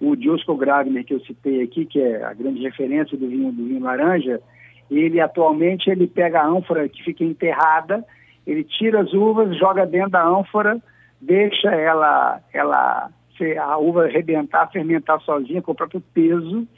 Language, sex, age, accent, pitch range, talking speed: Portuguese, male, 60-79, Brazilian, 140-185 Hz, 165 wpm